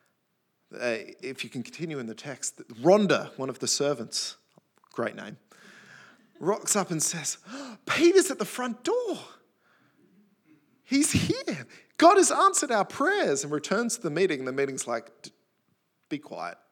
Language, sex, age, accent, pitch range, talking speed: English, male, 20-39, Australian, 130-210 Hz, 150 wpm